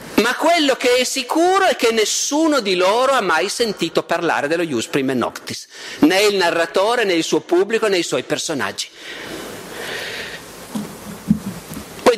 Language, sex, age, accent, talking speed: Italian, male, 50-69, native, 150 wpm